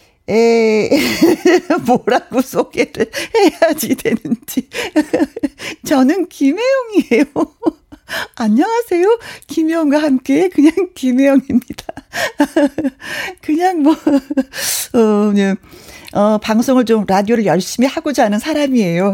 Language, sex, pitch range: Korean, female, 190-280 Hz